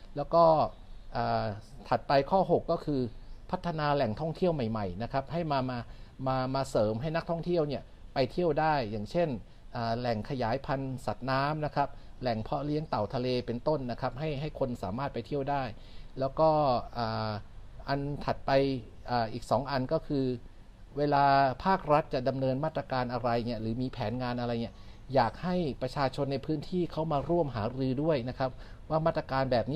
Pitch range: 120-155 Hz